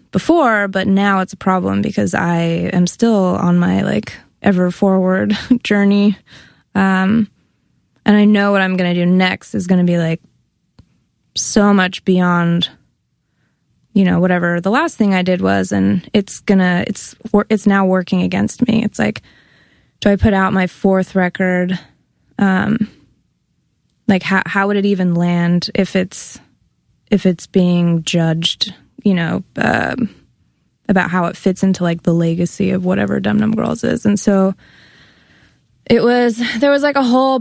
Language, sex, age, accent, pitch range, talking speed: English, female, 20-39, American, 180-205 Hz, 160 wpm